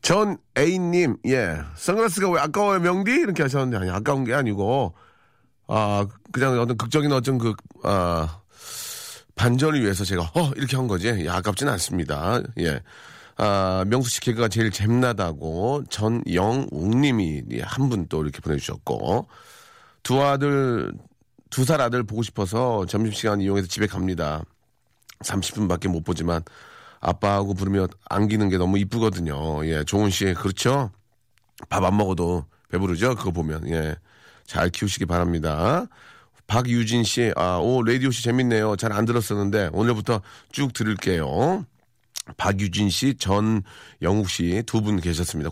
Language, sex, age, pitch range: Korean, male, 40-59, 95-125 Hz